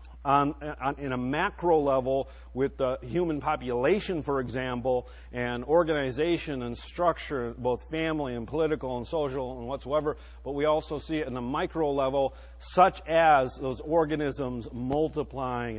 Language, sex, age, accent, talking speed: English, male, 40-59, American, 140 wpm